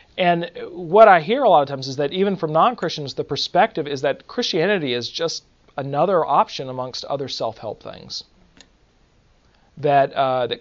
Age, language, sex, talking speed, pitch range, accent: 40-59, English, male, 175 wpm, 130-155 Hz, American